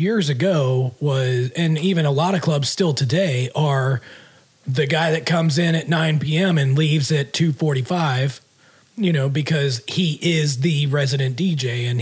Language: English